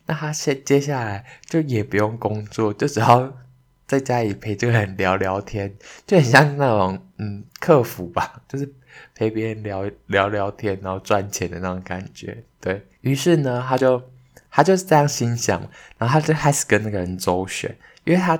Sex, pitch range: male, 95-125 Hz